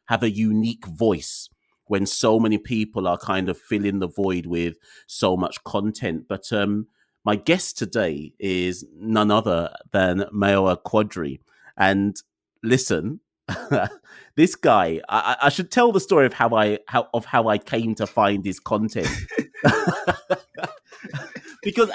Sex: male